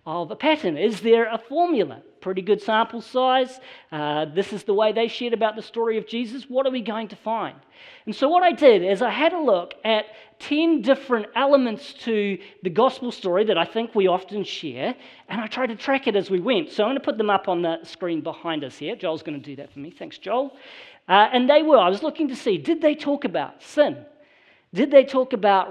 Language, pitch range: English, 200-270 Hz